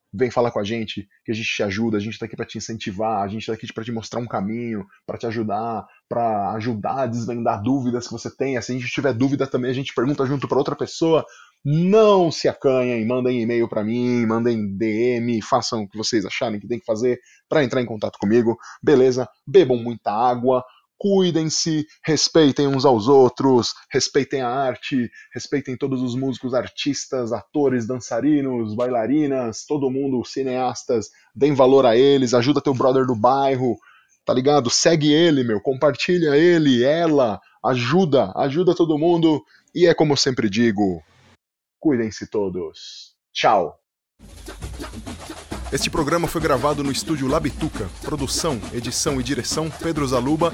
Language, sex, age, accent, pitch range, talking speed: Portuguese, male, 20-39, Brazilian, 115-145 Hz, 165 wpm